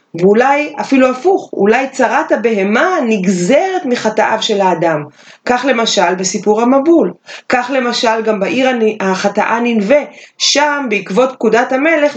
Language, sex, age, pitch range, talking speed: Hebrew, female, 30-49, 185-260 Hz, 120 wpm